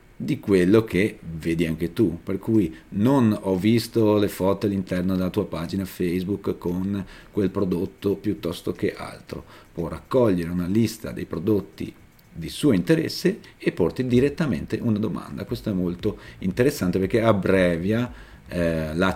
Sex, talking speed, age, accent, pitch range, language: male, 145 wpm, 40-59, native, 85-115 Hz, Italian